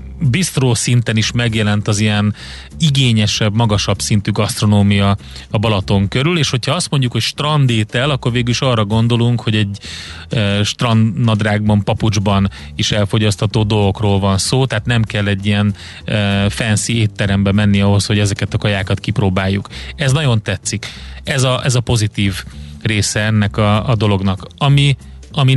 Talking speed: 145 wpm